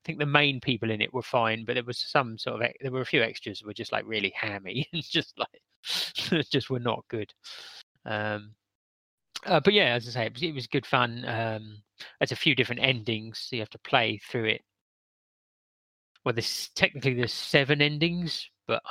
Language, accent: English, British